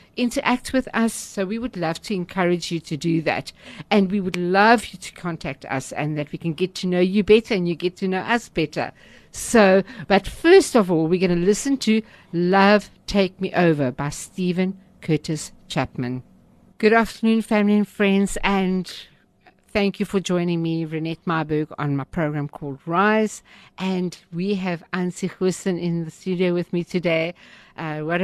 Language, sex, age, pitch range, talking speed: English, female, 60-79, 170-200 Hz, 185 wpm